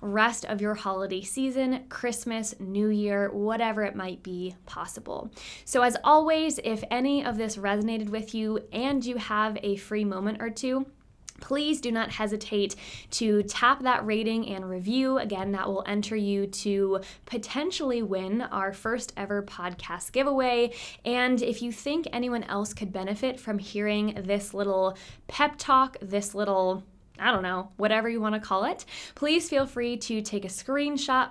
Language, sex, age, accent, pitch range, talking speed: English, female, 20-39, American, 200-250 Hz, 165 wpm